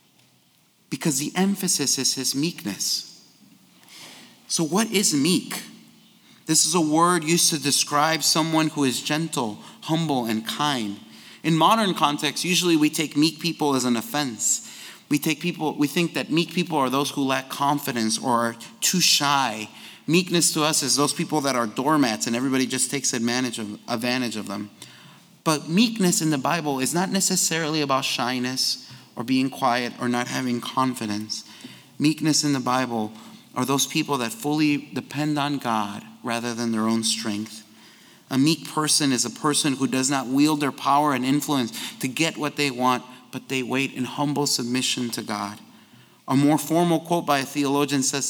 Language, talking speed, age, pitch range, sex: English, 175 wpm, 30-49, 125-160 Hz, male